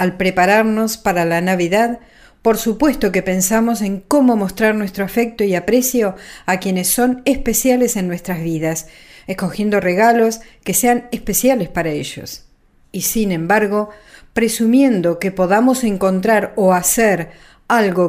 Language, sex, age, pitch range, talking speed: Spanish, female, 50-69, 185-230 Hz, 135 wpm